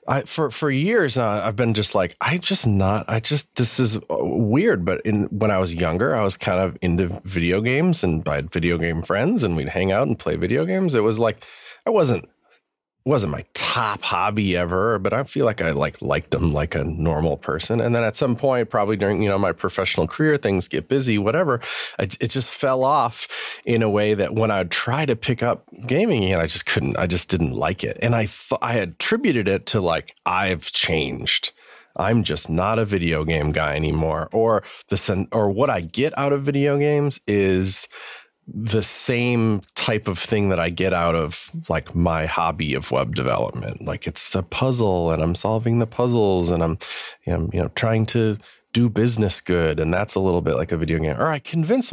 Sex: male